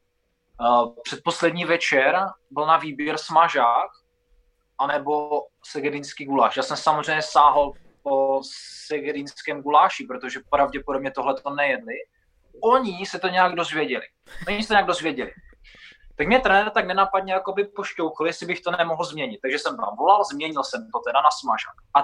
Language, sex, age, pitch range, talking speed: Czech, male, 20-39, 140-185 Hz, 150 wpm